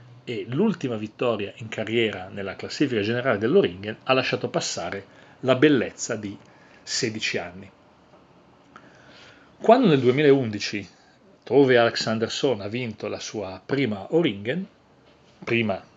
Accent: native